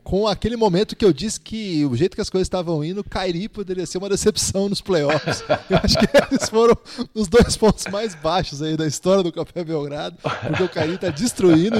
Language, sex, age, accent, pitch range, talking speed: Portuguese, male, 20-39, Brazilian, 145-195 Hz, 220 wpm